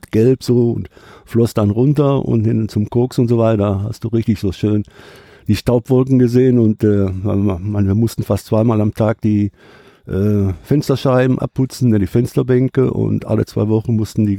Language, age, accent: German, 60-79, German